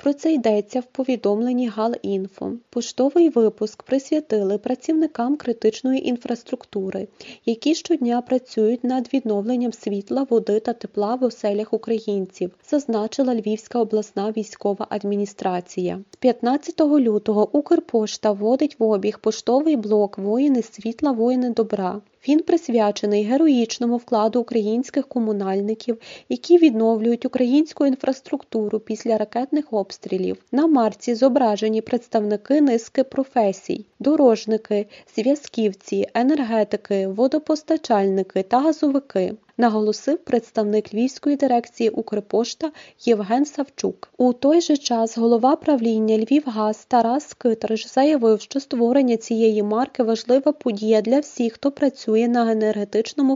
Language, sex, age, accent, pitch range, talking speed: Ukrainian, female, 20-39, native, 215-265 Hz, 110 wpm